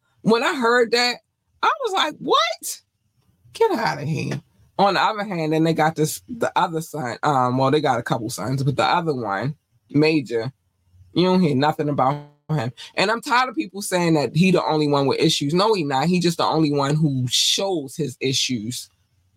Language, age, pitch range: English, 20-39, 125-175 Hz